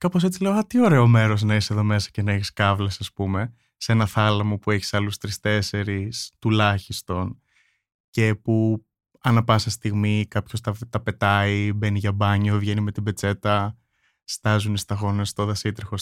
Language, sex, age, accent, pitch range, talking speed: Greek, male, 20-39, native, 105-130 Hz, 170 wpm